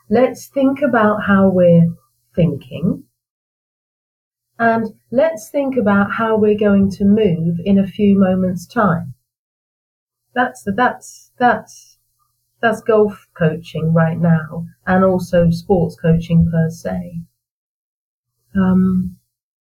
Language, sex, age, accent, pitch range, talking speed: English, female, 40-59, British, 165-205 Hz, 105 wpm